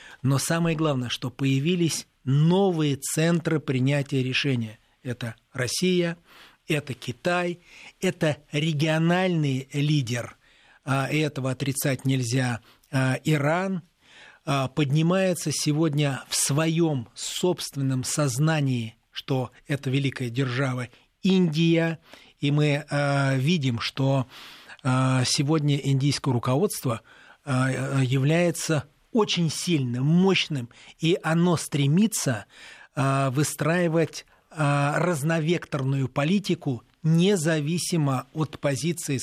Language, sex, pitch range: Russian, male, 130-160 Hz